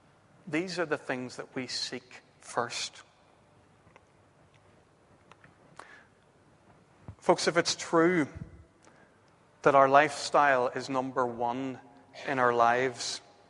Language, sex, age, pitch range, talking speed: English, male, 40-59, 135-160 Hz, 95 wpm